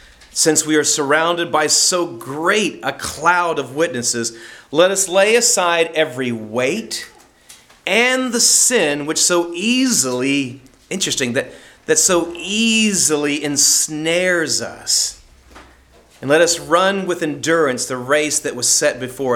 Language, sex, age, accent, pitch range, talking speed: English, male, 40-59, American, 140-200 Hz, 130 wpm